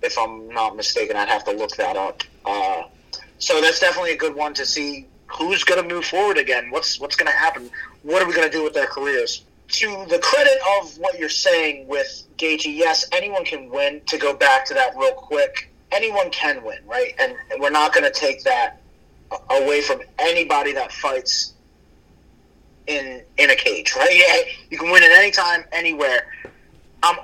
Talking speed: 195 wpm